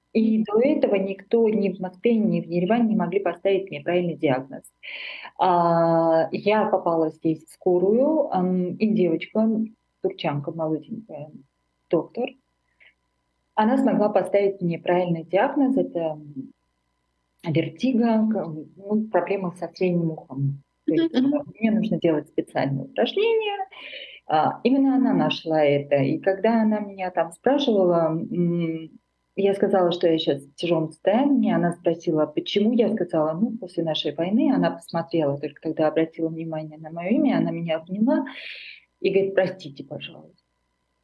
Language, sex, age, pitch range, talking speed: Russian, female, 30-49, 155-205 Hz, 135 wpm